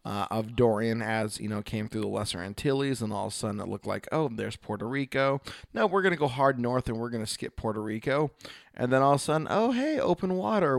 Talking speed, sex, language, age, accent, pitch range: 250 wpm, male, English, 20-39, American, 110-135 Hz